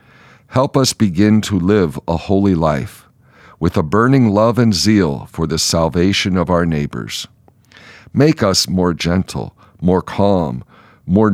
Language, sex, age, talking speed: English, male, 50-69, 145 wpm